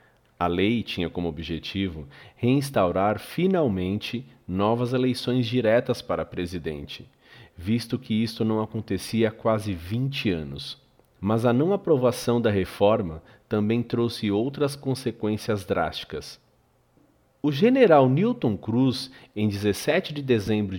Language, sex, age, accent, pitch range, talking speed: Portuguese, male, 40-59, Brazilian, 95-125 Hz, 115 wpm